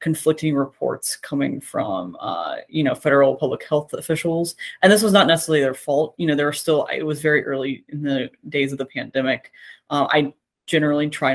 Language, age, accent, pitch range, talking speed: English, 20-39, American, 145-180 Hz, 195 wpm